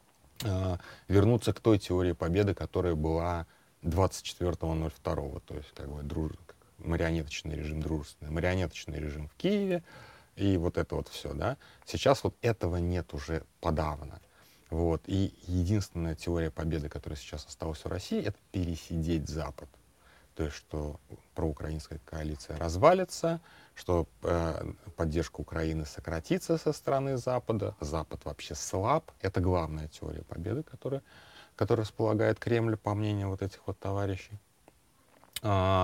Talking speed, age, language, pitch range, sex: 125 wpm, 30-49, Russian, 80-95 Hz, male